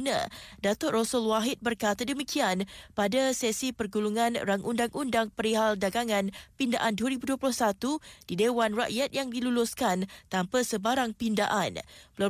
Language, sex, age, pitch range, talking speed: Malay, female, 20-39, 210-250 Hz, 110 wpm